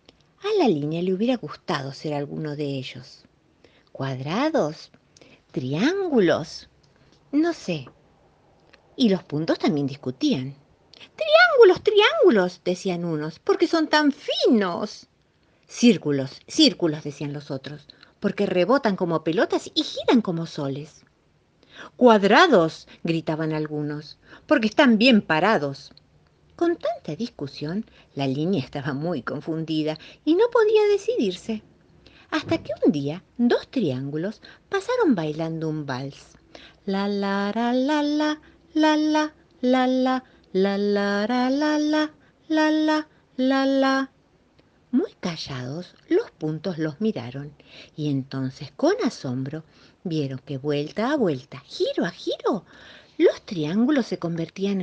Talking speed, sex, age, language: 120 wpm, female, 50-69, Spanish